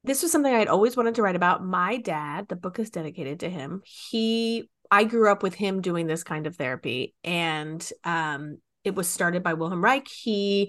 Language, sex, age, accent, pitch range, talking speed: English, female, 30-49, American, 165-215 Hz, 215 wpm